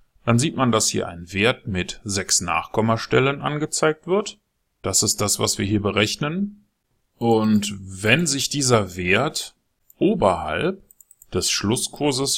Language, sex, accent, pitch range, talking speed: German, male, German, 100-120 Hz, 130 wpm